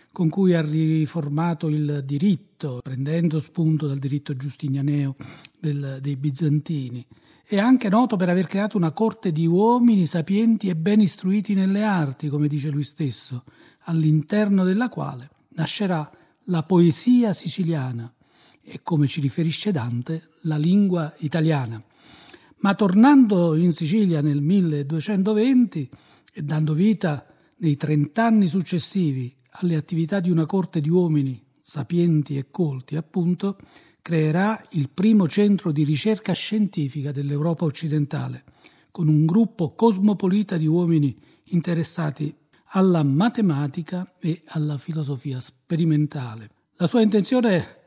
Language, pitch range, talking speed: Italian, 150-190 Hz, 120 wpm